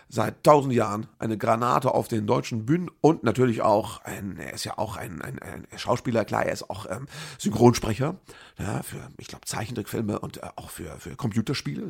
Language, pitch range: German, 110-150 Hz